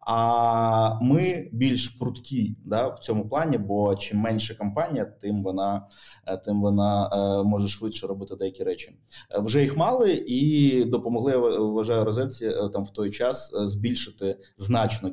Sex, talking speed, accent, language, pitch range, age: male, 140 wpm, native, Ukrainian, 105-130 Hz, 20-39